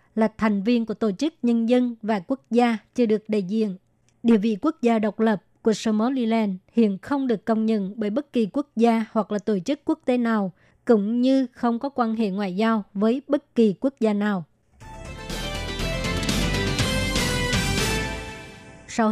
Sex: male